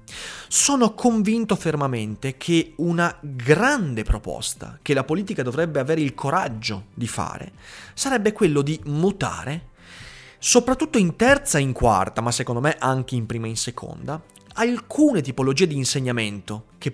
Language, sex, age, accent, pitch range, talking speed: Italian, male, 30-49, native, 130-190 Hz, 140 wpm